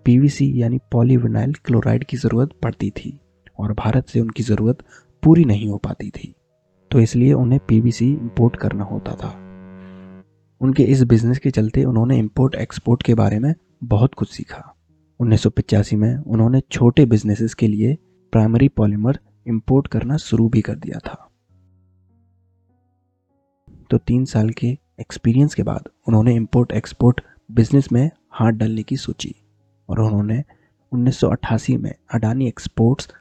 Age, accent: 30-49, native